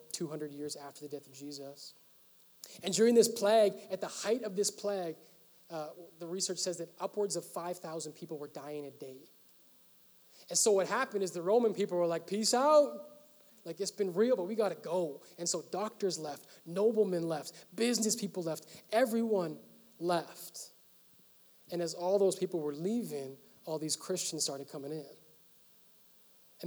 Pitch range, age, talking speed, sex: 150-190 Hz, 20-39, 170 wpm, male